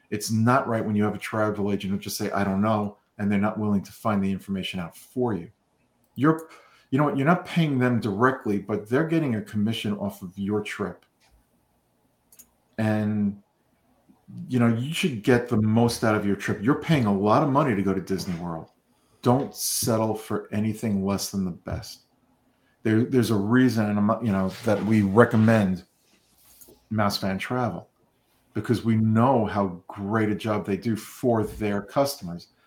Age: 40-59